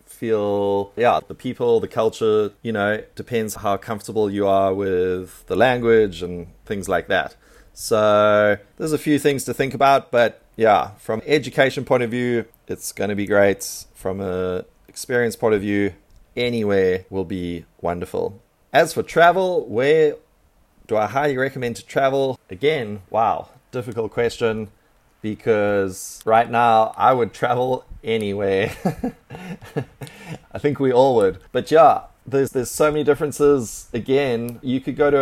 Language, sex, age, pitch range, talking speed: English, male, 20-39, 100-130 Hz, 150 wpm